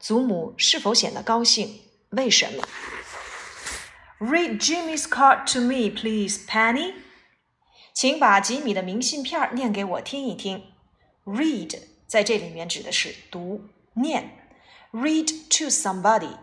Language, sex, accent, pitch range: Chinese, female, native, 205-280 Hz